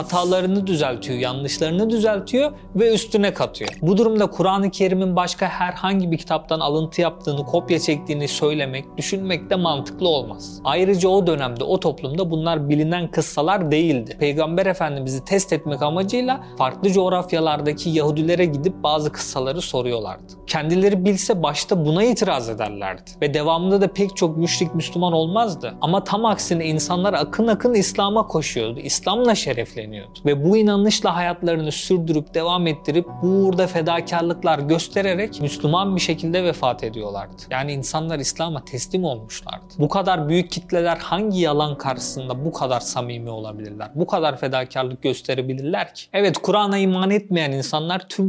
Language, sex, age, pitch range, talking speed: Turkish, male, 40-59, 145-185 Hz, 140 wpm